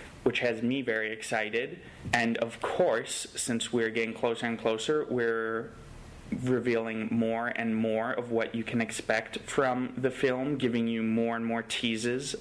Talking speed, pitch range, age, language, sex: 160 wpm, 110-125 Hz, 30-49, English, male